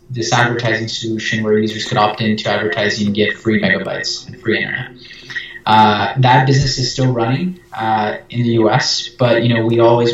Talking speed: 185 wpm